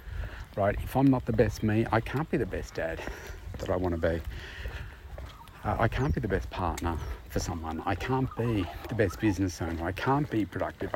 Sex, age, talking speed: male, 50-69, 210 wpm